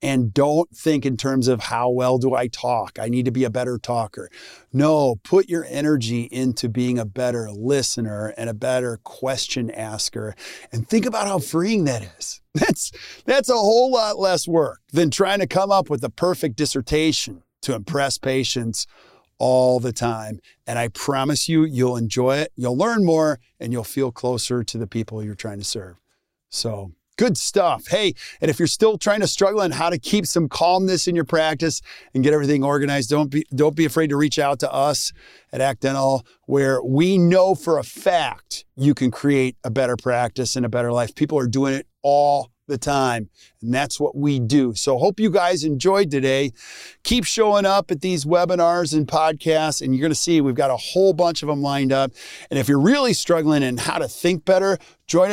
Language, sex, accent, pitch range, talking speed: English, male, American, 125-165 Hz, 200 wpm